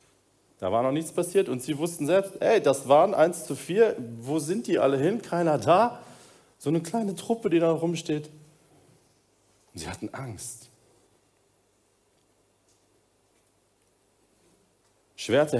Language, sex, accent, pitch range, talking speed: German, male, German, 110-160 Hz, 130 wpm